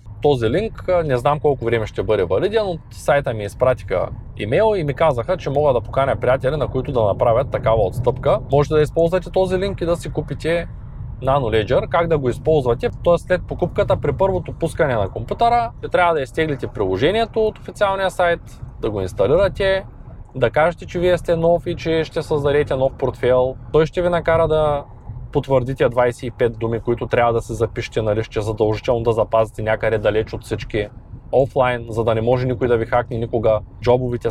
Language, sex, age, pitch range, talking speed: Bulgarian, male, 20-39, 115-160 Hz, 190 wpm